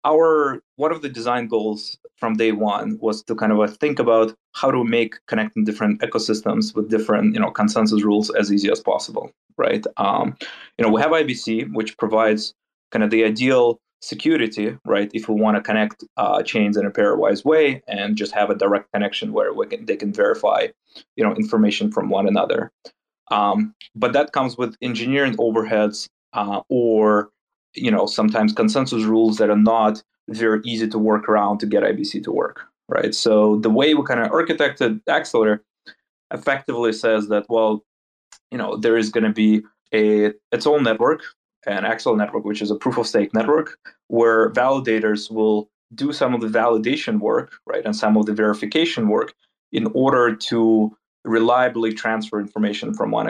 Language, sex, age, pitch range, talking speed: English, male, 20-39, 105-125 Hz, 180 wpm